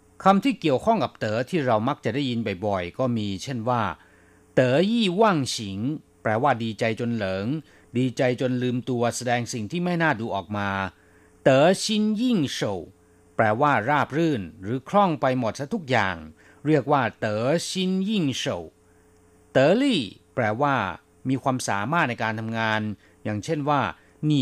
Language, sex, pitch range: Thai, male, 100-150 Hz